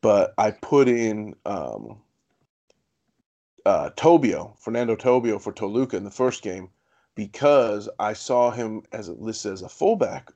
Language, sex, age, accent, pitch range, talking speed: English, male, 30-49, American, 105-120 Hz, 145 wpm